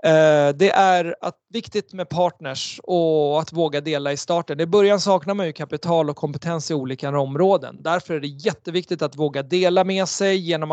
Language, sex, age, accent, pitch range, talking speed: Swedish, male, 30-49, native, 150-180 Hz, 175 wpm